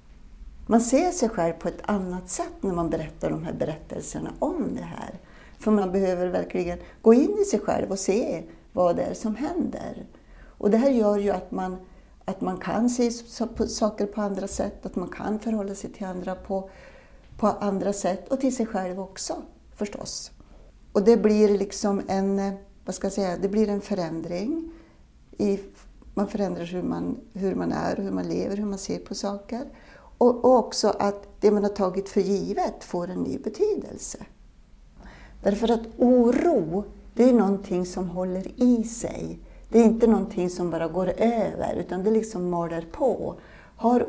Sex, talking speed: female, 180 wpm